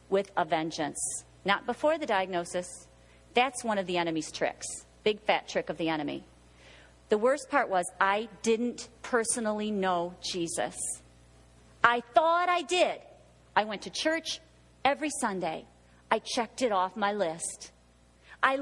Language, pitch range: English, 185-295 Hz